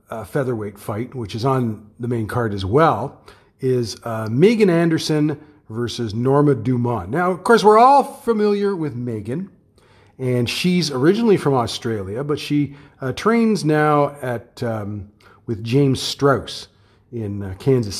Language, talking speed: English, 145 wpm